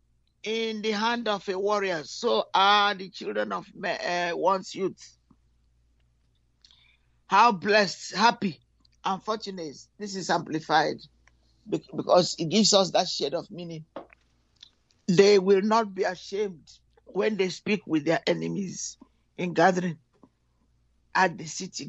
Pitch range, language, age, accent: 150-215 Hz, English, 50-69, Nigerian